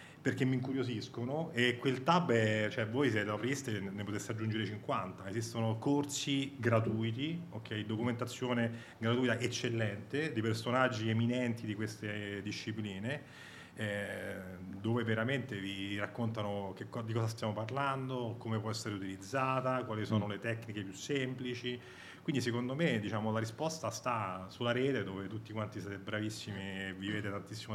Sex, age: male, 30-49